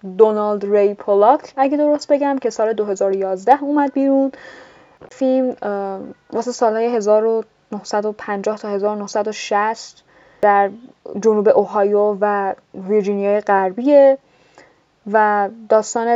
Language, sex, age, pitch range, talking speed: Persian, female, 10-29, 200-240 Hz, 95 wpm